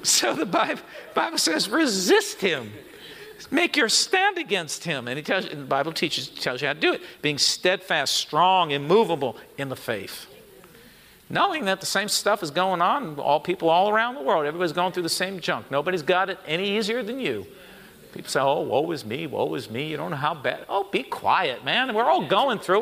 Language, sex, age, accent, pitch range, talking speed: English, male, 50-69, American, 175-245 Hz, 215 wpm